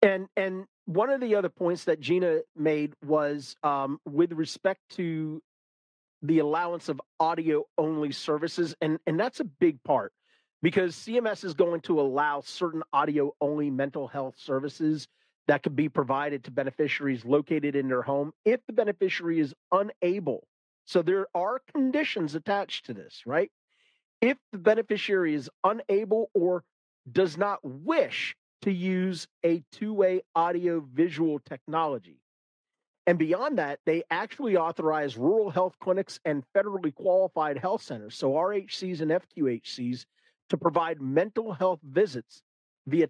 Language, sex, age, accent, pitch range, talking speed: English, male, 40-59, American, 145-185 Hz, 140 wpm